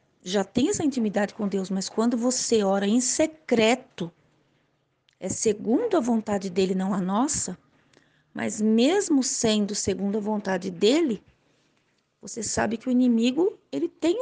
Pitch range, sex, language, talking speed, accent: 200-265 Hz, female, Portuguese, 140 wpm, Brazilian